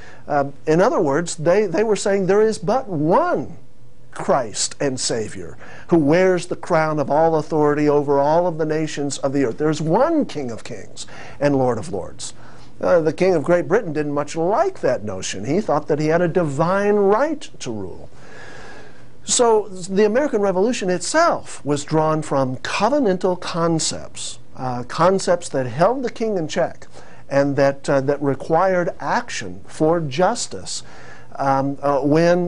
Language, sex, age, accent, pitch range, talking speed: English, male, 50-69, American, 135-180 Hz, 165 wpm